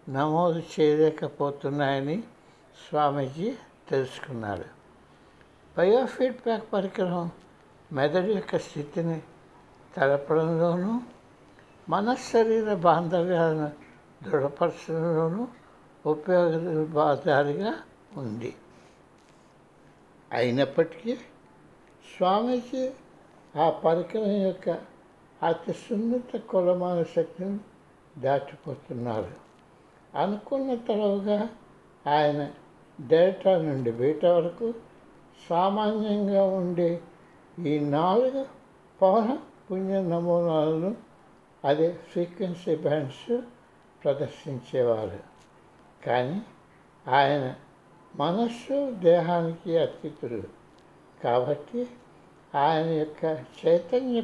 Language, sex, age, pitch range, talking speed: Telugu, male, 60-79, 150-200 Hz, 60 wpm